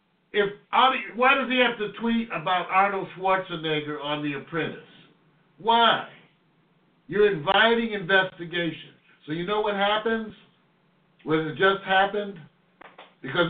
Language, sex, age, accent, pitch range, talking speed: English, male, 60-79, American, 150-190 Hz, 115 wpm